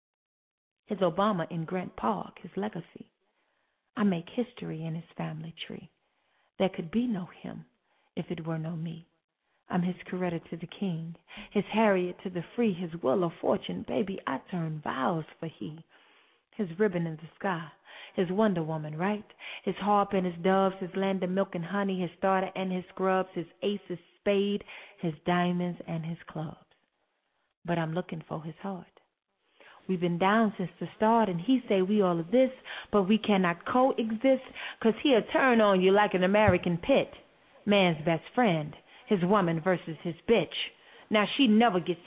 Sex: female